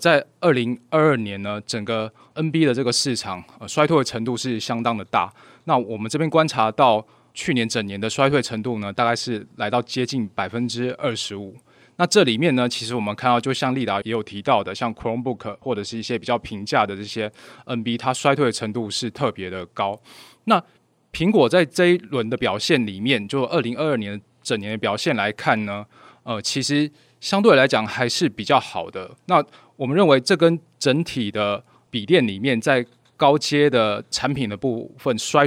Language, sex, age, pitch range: Chinese, male, 20-39, 110-140 Hz